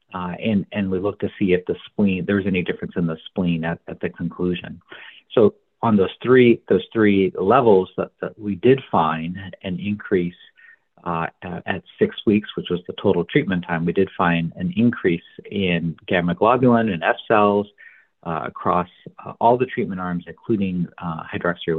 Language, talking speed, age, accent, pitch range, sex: English, 180 wpm, 50-69, American, 85-105 Hz, male